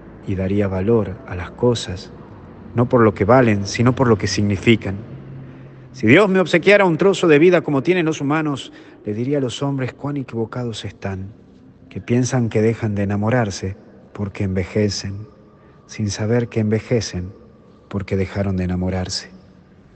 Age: 50-69